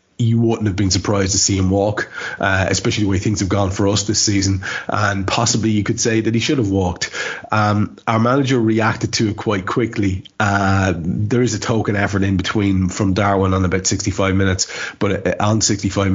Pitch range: 95-110 Hz